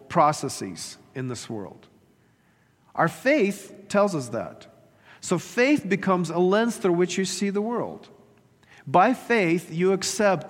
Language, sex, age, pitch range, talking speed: English, male, 40-59, 145-190 Hz, 135 wpm